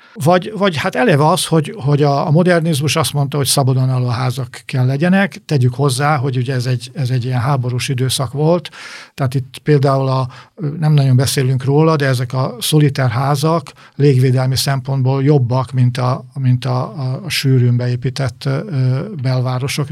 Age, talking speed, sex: 50-69, 155 wpm, male